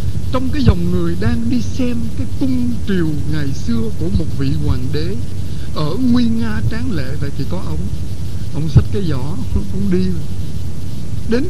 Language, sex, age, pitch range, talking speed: Vietnamese, male, 60-79, 90-115 Hz, 160 wpm